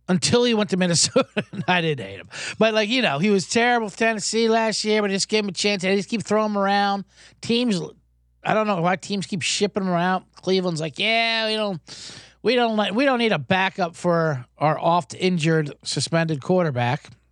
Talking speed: 215 wpm